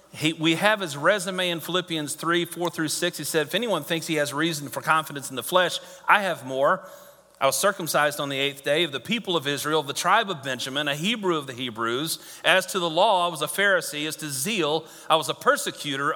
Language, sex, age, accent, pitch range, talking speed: English, male, 40-59, American, 150-190 Hz, 235 wpm